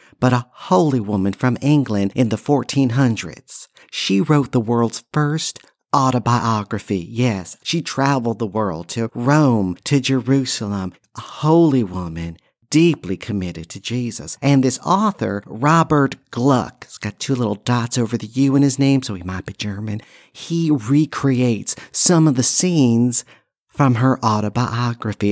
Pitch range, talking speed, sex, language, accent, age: 110-145 Hz, 145 wpm, male, English, American, 50-69